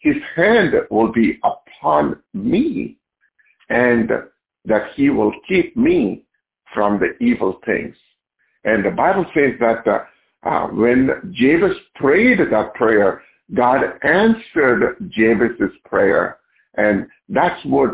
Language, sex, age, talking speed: English, male, 60-79, 115 wpm